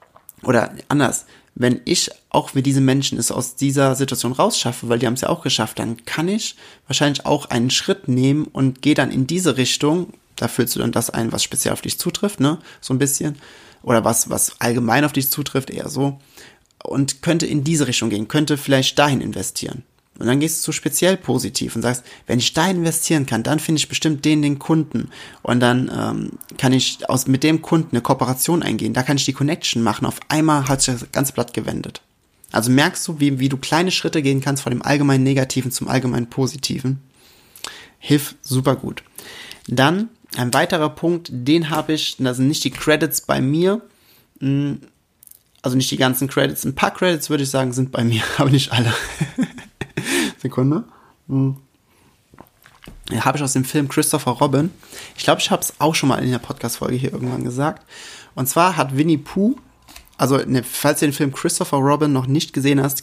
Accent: German